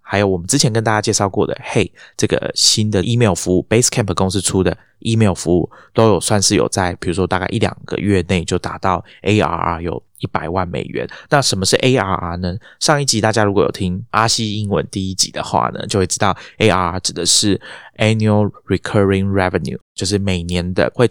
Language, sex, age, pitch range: Chinese, male, 20-39, 95-110 Hz